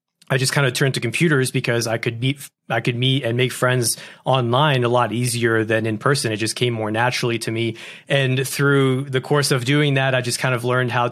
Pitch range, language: 125-150 Hz, English